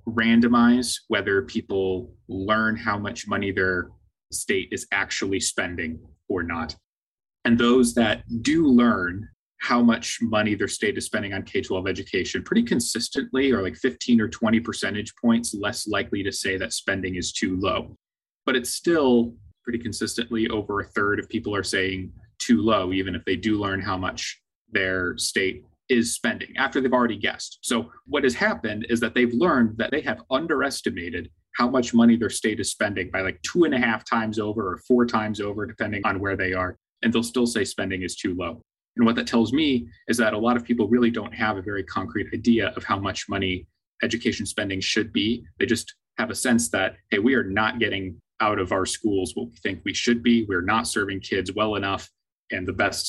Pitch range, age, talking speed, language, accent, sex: 95-120 Hz, 20-39, 200 wpm, English, American, male